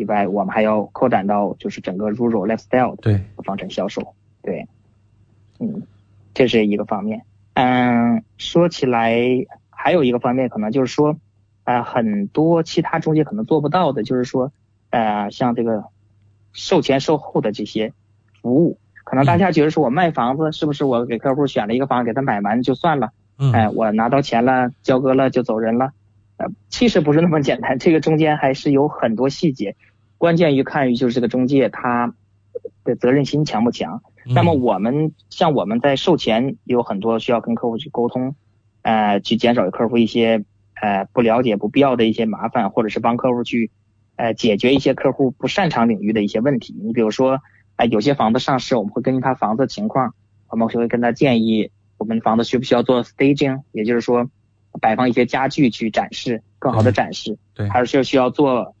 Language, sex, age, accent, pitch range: English, male, 20-39, Chinese, 110-135 Hz